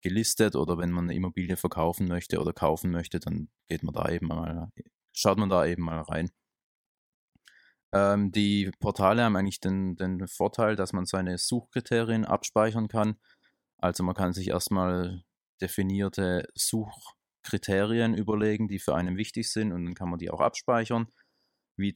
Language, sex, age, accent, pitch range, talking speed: German, male, 20-39, German, 90-105 Hz, 160 wpm